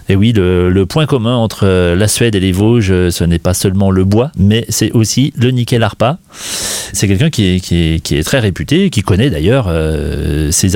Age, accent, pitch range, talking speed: 30-49, French, 90-115 Hz, 220 wpm